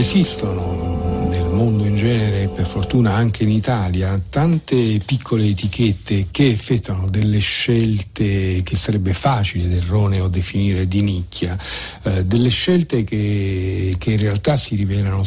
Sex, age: male, 50-69